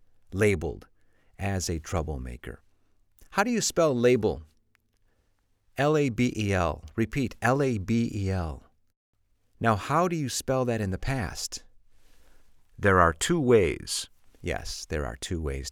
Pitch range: 90-120 Hz